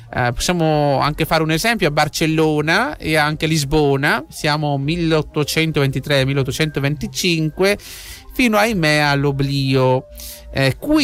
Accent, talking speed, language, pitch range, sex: native, 100 wpm, Italian, 150-225 Hz, male